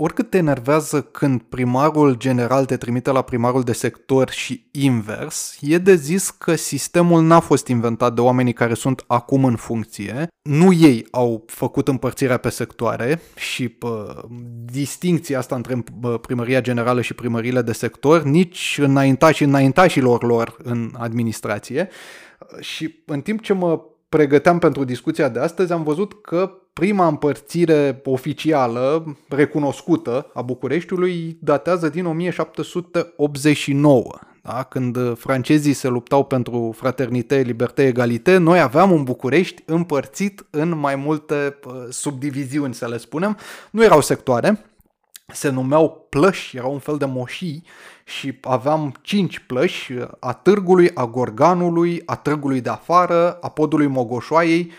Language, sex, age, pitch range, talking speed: Romanian, male, 20-39, 125-160 Hz, 135 wpm